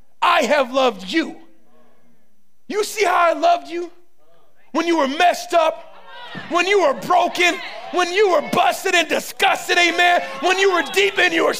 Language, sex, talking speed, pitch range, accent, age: English, male, 165 wpm, 305-395 Hz, American, 30-49